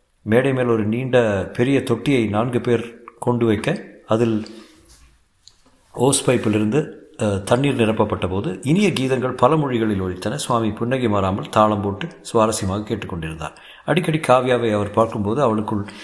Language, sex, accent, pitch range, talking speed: Tamil, male, native, 105-130 Hz, 125 wpm